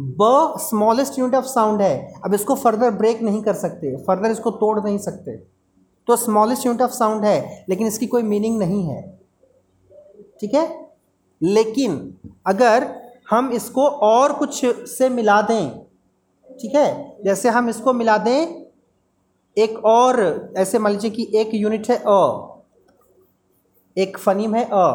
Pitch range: 180-245 Hz